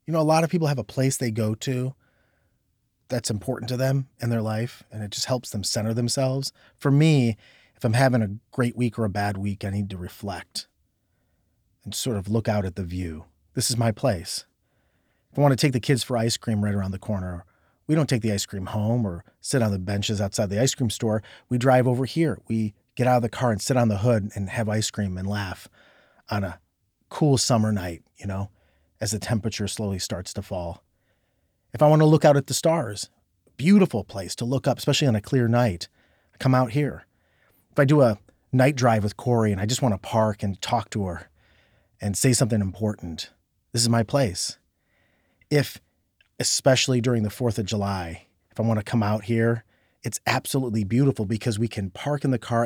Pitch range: 100-130 Hz